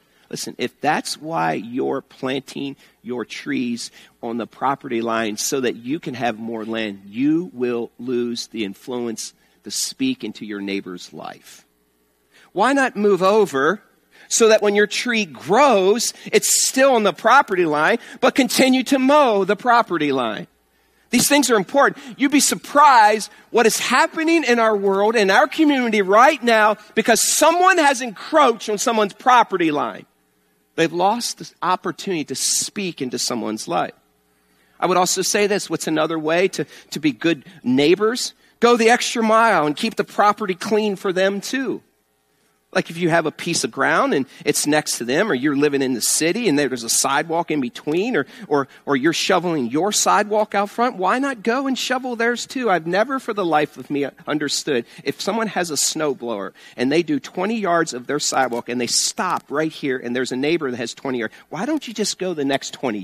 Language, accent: English, American